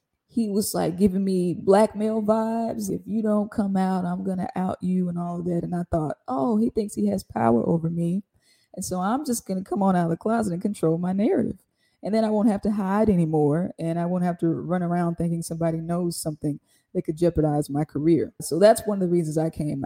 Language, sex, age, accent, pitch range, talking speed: English, female, 20-39, American, 160-185 Hz, 240 wpm